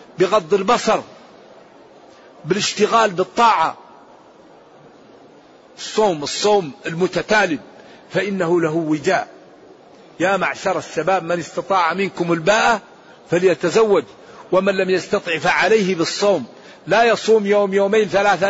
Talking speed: 90 wpm